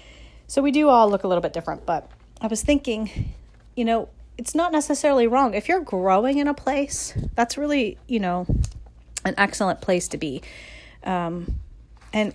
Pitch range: 175-220 Hz